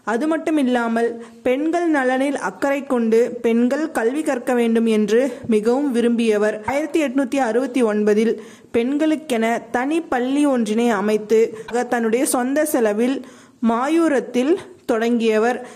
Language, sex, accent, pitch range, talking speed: Tamil, female, native, 230-275 Hz, 95 wpm